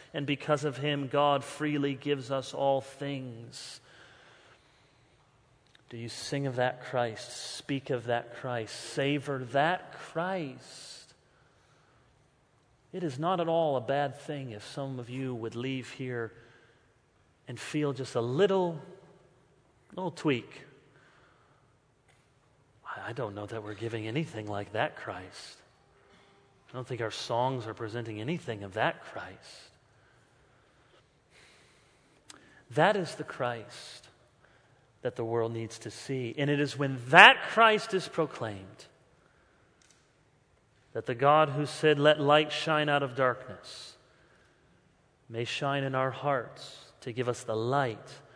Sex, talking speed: male, 130 wpm